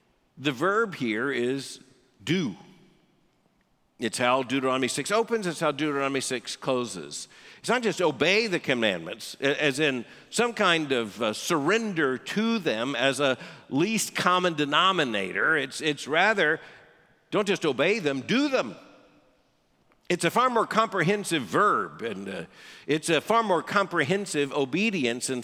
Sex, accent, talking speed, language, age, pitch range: male, American, 135 wpm, English, 50-69, 135-200 Hz